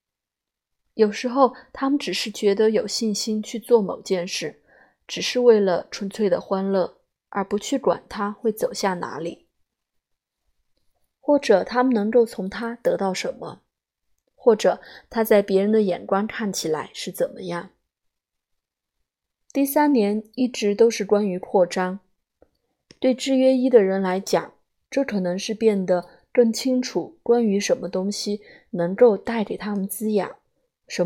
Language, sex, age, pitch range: Chinese, female, 20-39, 190-240 Hz